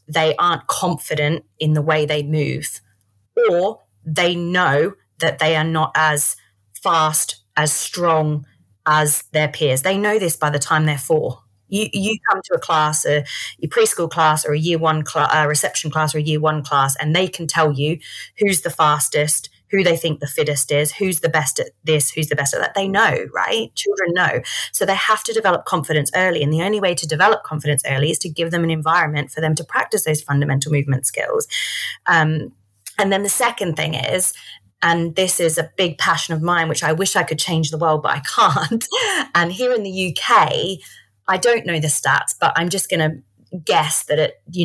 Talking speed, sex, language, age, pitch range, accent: 210 wpm, female, English, 30-49, 150-175 Hz, British